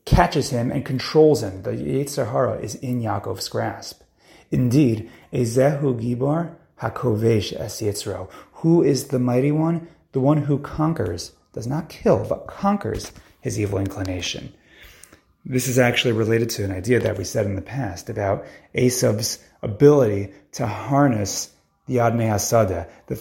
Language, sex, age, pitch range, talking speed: English, male, 30-49, 110-140 Hz, 140 wpm